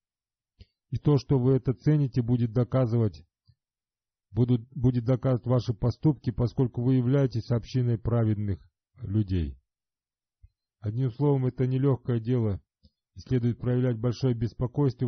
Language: Russian